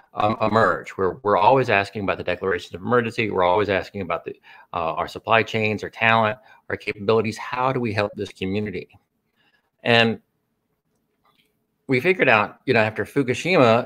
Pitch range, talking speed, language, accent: 100-120 Hz, 165 wpm, English, American